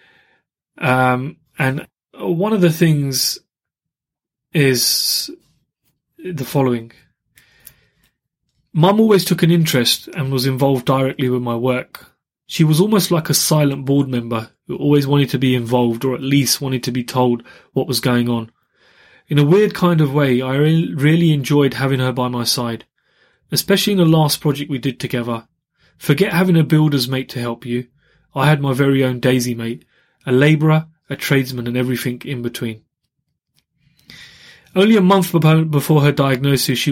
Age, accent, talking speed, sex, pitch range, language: 30-49, British, 160 wpm, male, 125-150 Hz, English